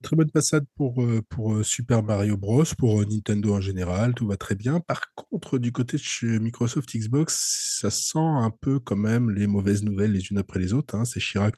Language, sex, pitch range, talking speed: French, male, 100-130 Hz, 215 wpm